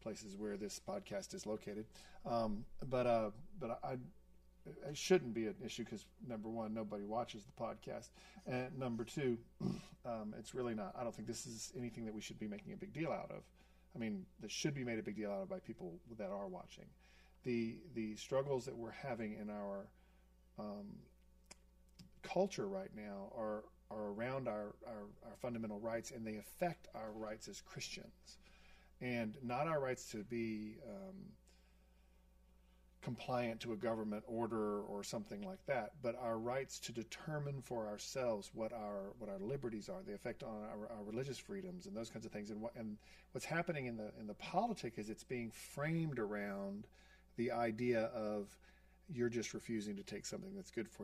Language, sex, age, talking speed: English, male, 40-59, 185 wpm